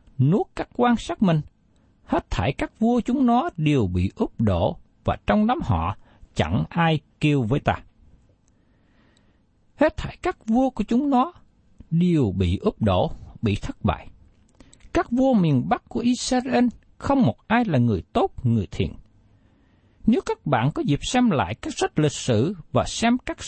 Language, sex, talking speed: Vietnamese, male, 170 wpm